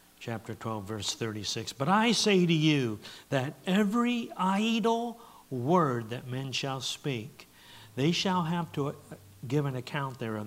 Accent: American